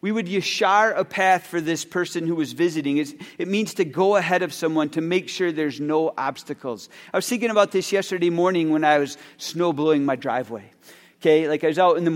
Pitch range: 150-185 Hz